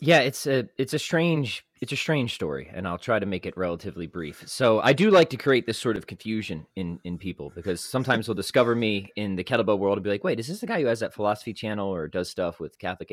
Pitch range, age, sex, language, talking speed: 90-125 Hz, 20-39, male, English, 265 wpm